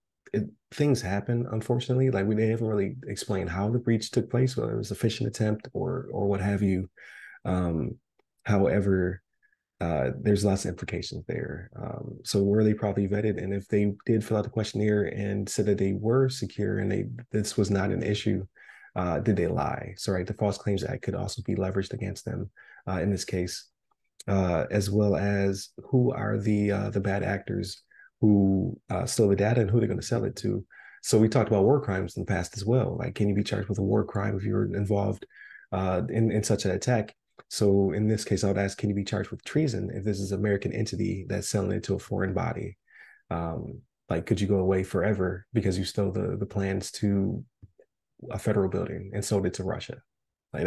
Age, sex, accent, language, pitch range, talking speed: 20-39, male, American, English, 100-110 Hz, 215 wpm